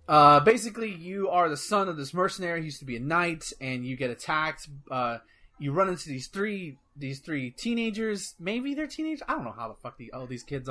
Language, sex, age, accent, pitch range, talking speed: English, male, 30-49, American, 135-190 Hz, 230 wpm